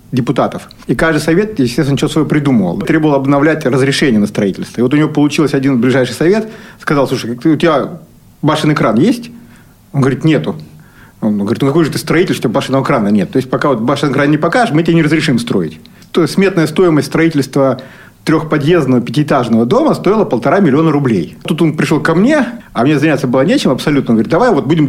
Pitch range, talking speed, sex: 140-175 Hz, 200 wpm, male